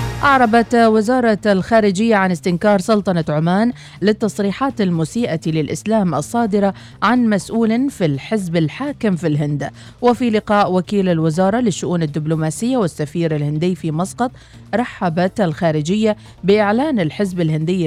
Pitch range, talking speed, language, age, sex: 160-225 Hz, 110 wpm, Arabic, 40-59, female